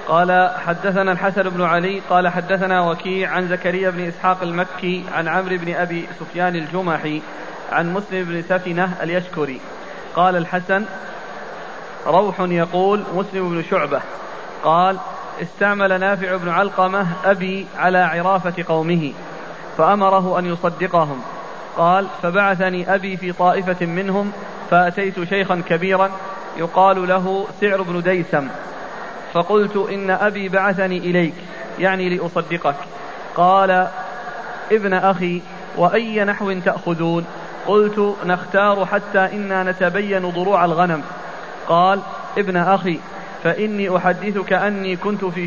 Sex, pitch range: male, 175-195 Hz